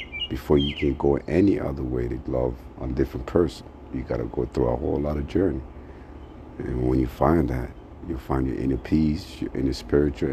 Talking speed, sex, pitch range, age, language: 200 wpm, male, 65-75 Hz, 50-69, English